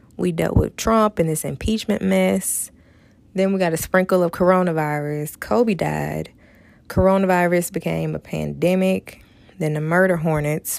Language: English